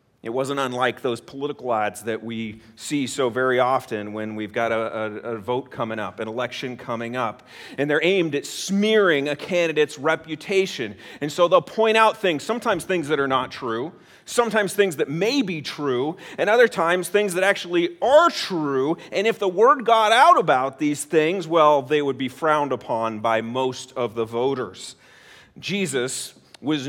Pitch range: 125-190 Hz